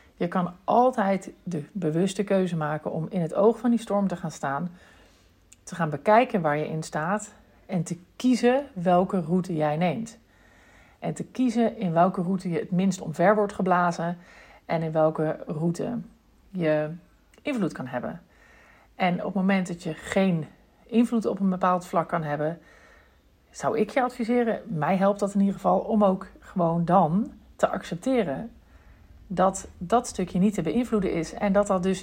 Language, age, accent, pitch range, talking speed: Dutch, 50-69, Dutch, 155-210 Hz, 170 wpm